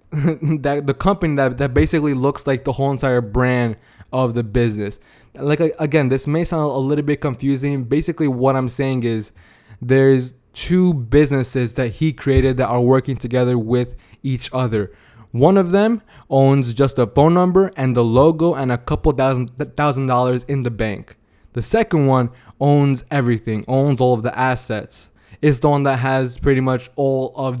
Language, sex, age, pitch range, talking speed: English, male, 20-39, 120-145 Hz, 175 wpm